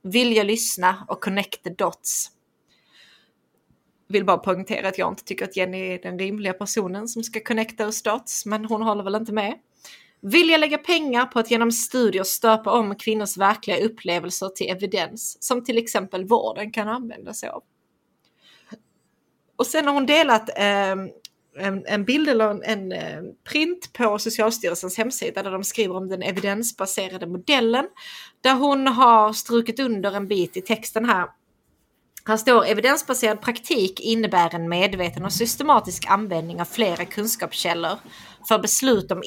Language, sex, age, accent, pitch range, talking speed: Swedish, female, 30-49, native, 185-230 Hz, 155 wpm